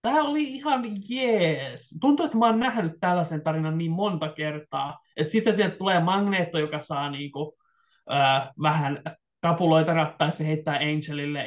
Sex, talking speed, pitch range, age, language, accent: male, 145 wpm, 145-200 Hz, 20-39, Finnish, native